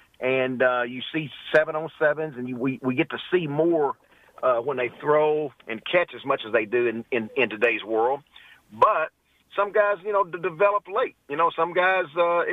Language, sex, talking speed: English, male, 225 wpm